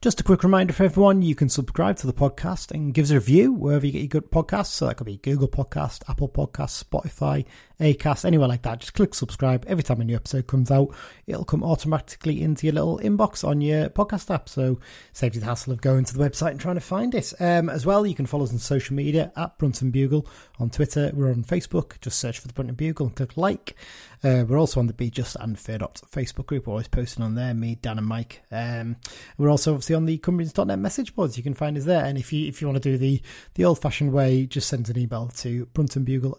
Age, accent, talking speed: 30-49, British, 250 wpm